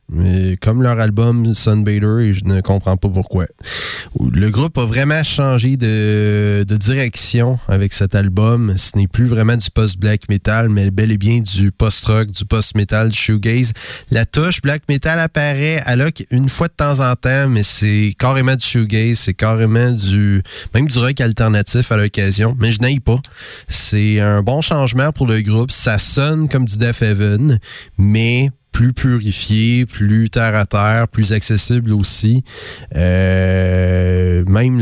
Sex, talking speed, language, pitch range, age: male, 160 wpm, French, 100-120 Hz, 30-49